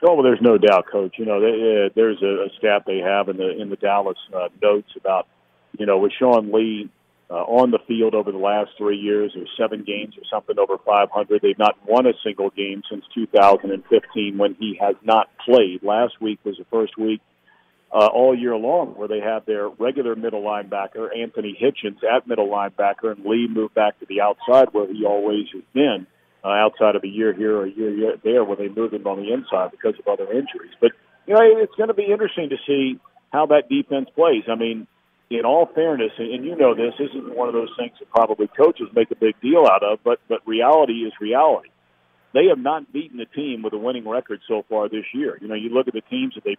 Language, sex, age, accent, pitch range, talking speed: English, male, 50-69, American, 105-140 Hz, 230 wpm